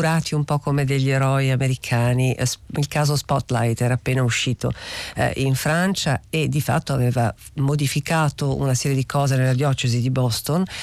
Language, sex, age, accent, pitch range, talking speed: Italian, female, 50-69, native, 130-145 Hz, 155 wpm